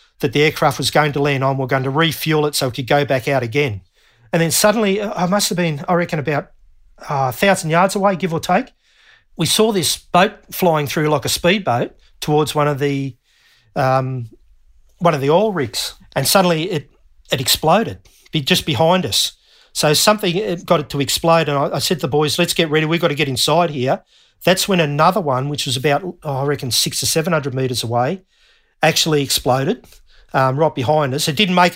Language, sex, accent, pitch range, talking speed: English, male, Australian, 135-165 Hz, 215 wpm